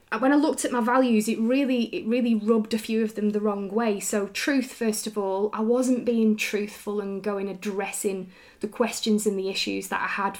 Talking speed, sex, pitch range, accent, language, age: 220 wpm, female, 200-235 Hz, British, English, 20-39